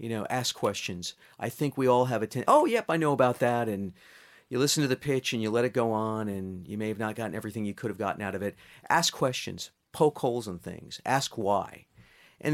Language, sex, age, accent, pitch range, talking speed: English, male, 40-59, American, 105-130 Hz, 250 wpm